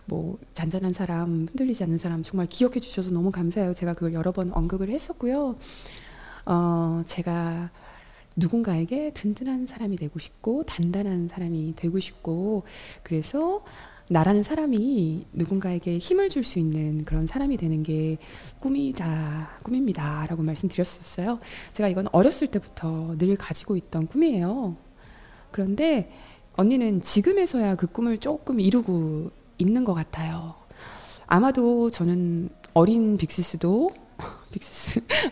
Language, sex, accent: Korean, female, native